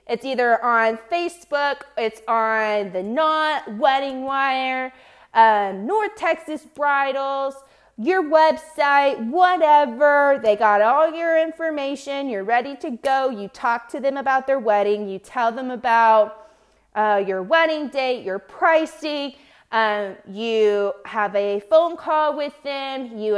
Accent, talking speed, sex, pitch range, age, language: American, 135 wpm, female, 210-315 Hz, 20-39, English